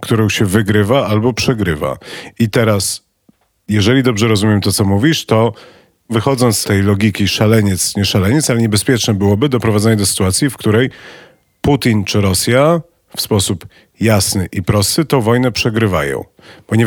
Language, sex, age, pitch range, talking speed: Polish, male, 40-59, 100-120 Hz, 145 wpm